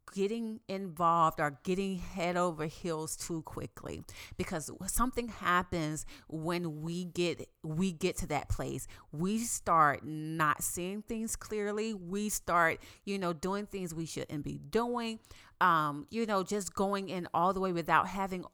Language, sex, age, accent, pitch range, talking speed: English, female, 30-49, American, 165-210 Hz, 150 wpm